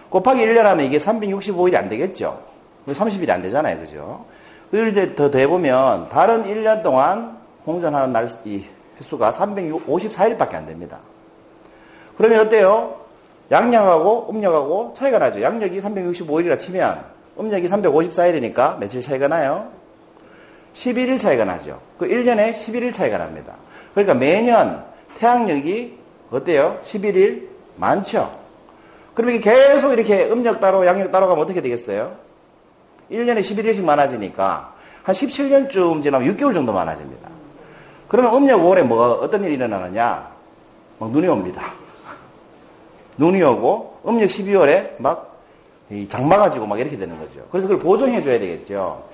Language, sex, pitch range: Korean, male, 160-230 Hz